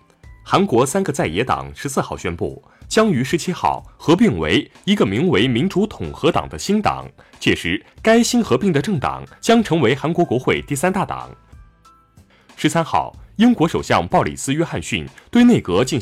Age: 20-39